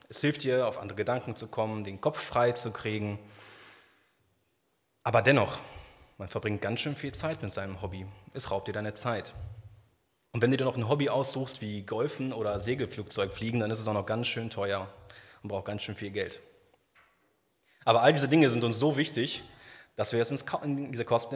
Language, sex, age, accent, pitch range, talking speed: German, male, 30-49, German, 100-125 Hz, 195 wpm